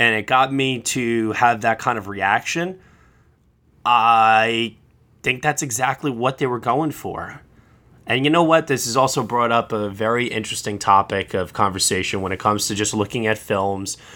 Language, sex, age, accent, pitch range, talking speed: English, male, 20-39, American, 105-125 Hz, 180 wpm